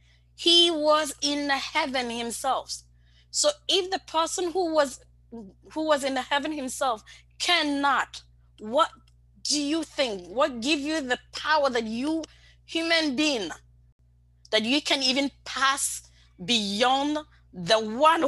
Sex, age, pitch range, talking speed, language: female, 20-39, 220-305 Hz, 130 wpm, English